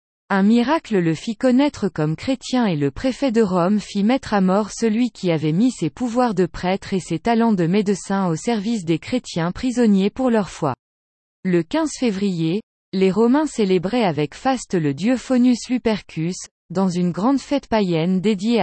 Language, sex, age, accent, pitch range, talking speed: French, female, 20-39, French, 175-245 Hz, 175 wpm